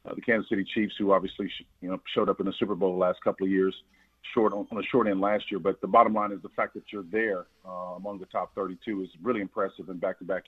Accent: American